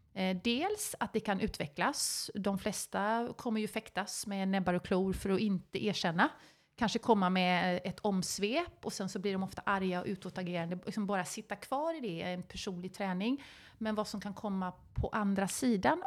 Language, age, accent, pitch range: Swedish, 30-49, native, 185-225 Hz